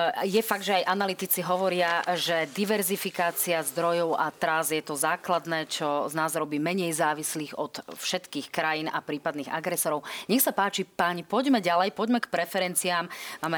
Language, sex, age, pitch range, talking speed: Slovak, female, 30-49, 165-210 Hz, 160 wpm